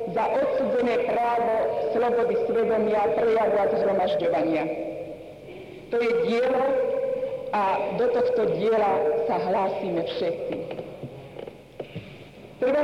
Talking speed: 85 wpm